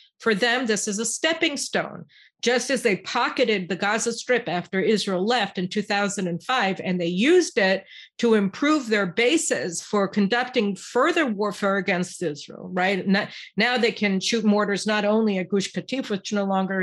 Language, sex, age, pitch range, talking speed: English, female, 50-69, 195-245 Hz, 170 wpm